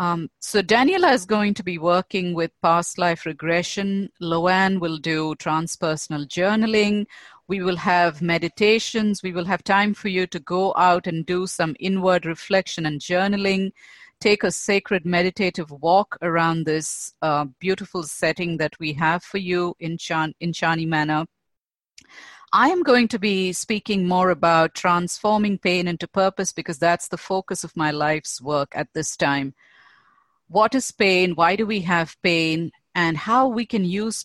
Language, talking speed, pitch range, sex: English, 160 wpm, 165-205 Hz, female